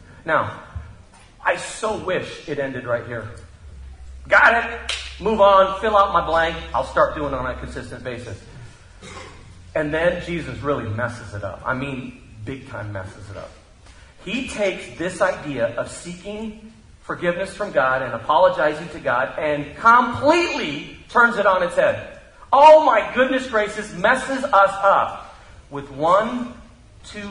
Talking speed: 150 wpm